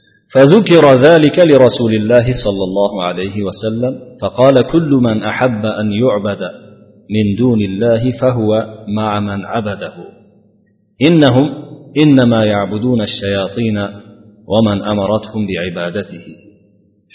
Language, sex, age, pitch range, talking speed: Bulgarian, male, 40-59, 105-130 Hz, 110 wpm